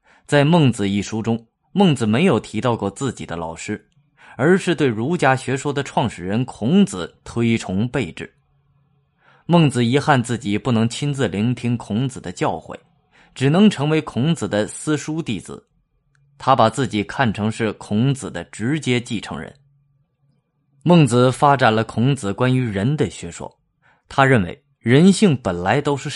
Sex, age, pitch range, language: male, 20-39, 110-145 Hz, Chinese